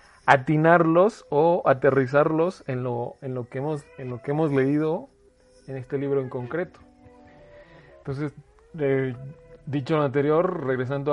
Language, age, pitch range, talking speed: Spanish, 40-59, 130-160 Hz, 135 wpm